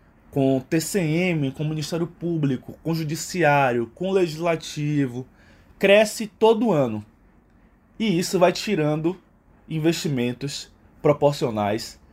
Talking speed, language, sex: 110 wpm, Portuguese, male